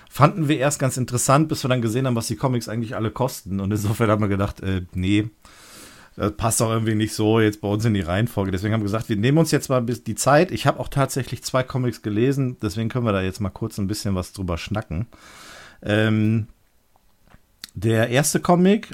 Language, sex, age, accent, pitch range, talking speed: German, male, 50-69, German, 110-140 Hz, 220 wpm